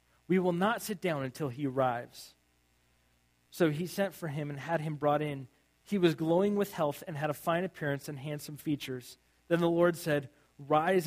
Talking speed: 195 wpm